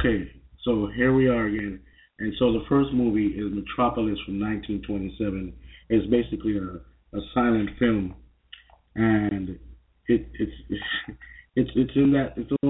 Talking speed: 110 wpm